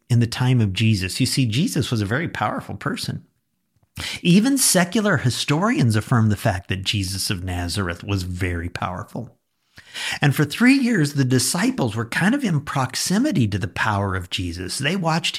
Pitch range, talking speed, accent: 110-155 Hz, 170 wpm, American